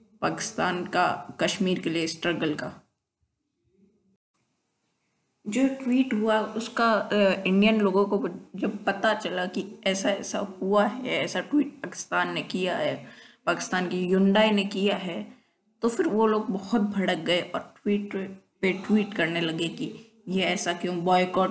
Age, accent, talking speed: 20-39, native, 145 wpm